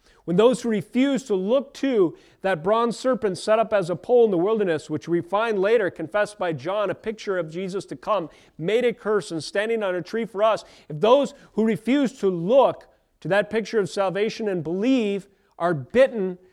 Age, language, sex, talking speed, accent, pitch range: 30-49, English, male, 205 wpm, American, 160-210 Hz